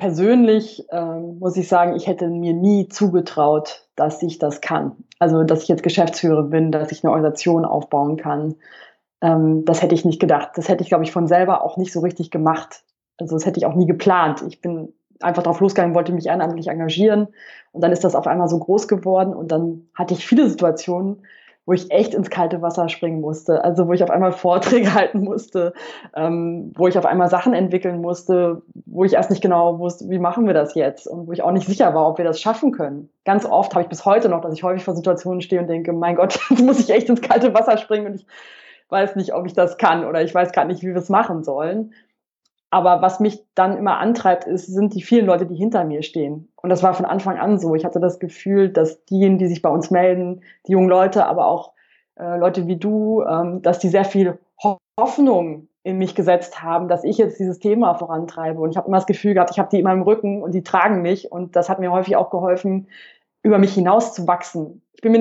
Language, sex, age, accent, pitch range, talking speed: German, female, 20-39, German, 170-195 Hz, 235 wpm